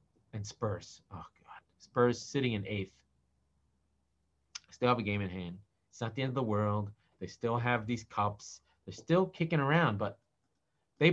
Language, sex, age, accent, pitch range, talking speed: English, male, 30-49, American, 110-155 Hz, 175 wpm